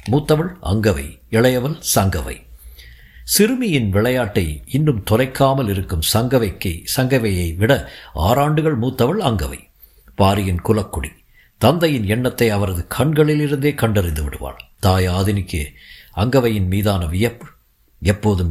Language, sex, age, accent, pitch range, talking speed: Tamil, male, 50-69, native, 85-130 Hz, 95 wpm